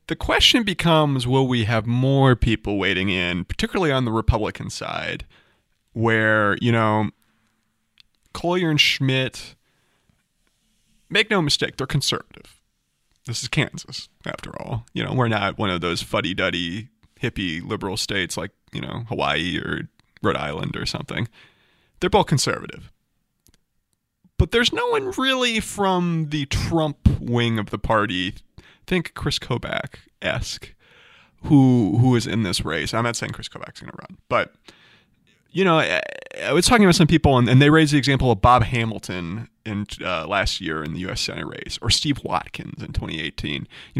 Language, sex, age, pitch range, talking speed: English, male, 30-49, 105-145 Hz, 160 wpm